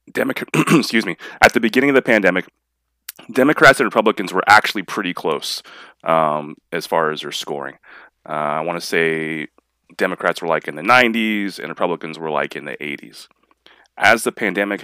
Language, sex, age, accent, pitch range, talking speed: English, male, 30-49, American, 75-90 Hz, 175 wpm